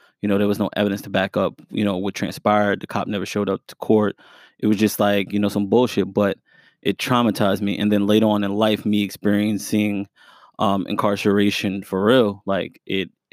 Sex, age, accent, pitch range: male, 20-39, American, 100-110 Hz